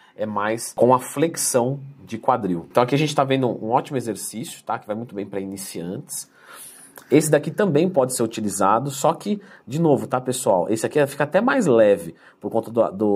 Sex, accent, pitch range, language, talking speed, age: male, Brazilian, 105-150 Hz, Portuguese, 205 wpm, 40-59